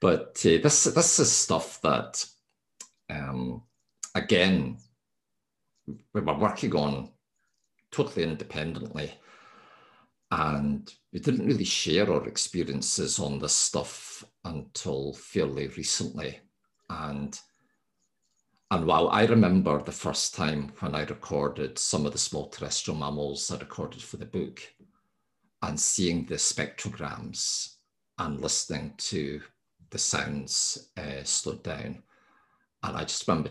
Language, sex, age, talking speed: English, male, 50-69, 120 wpm